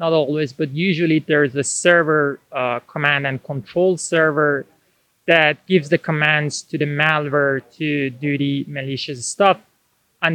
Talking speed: 145 wpm